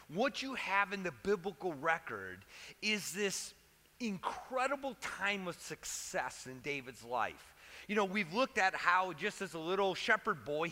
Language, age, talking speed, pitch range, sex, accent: English, 30-49, 155 wpm, 150-215 Hz, male, American